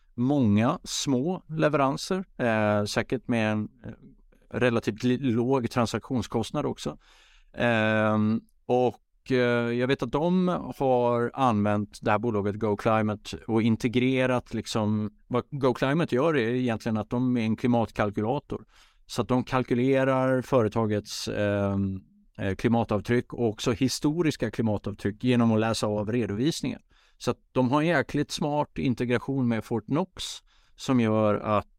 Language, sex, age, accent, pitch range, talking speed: English, male, 60-79, Norwegian, 105-125 Hz, 125 wpm